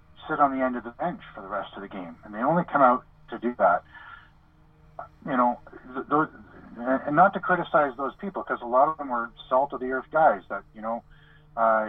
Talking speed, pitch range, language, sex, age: 230 wpm, 105-145 Hz, English, male, 50-69